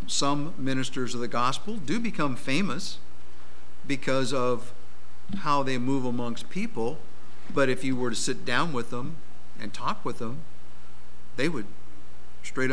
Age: 60-79